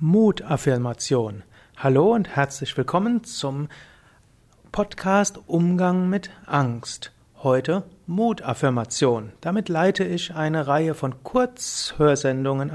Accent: German